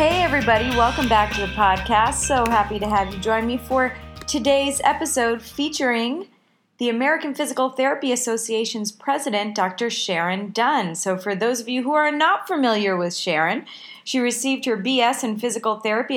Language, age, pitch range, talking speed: English, 30-49, 210-270 Hz, 165 wpm